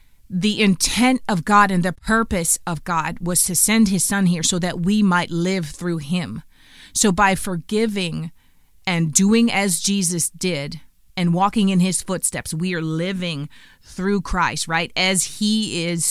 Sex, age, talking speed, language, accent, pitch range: female, 30-49, 165 wpm, English, American, 165-195 Hz